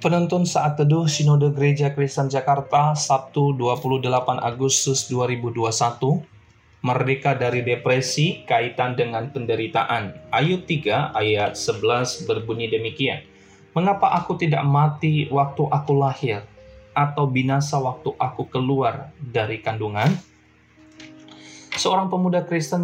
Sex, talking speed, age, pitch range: male, 105 wpm, 20-39, 130-155 Hz